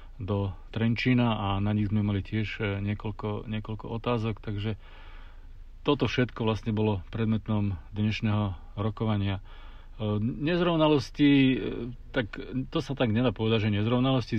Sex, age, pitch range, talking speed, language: male, 40-59, 105-120 Hz, 115 wpm, Slovak